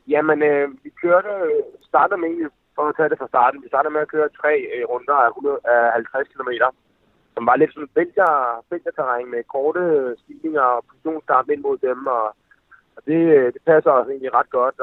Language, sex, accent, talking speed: Danish, male, native, 145 wpm